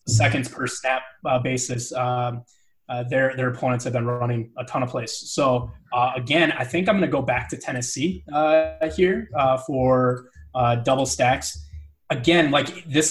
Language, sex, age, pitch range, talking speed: English, male, 20-39, 125-155 Hz, 180 wpm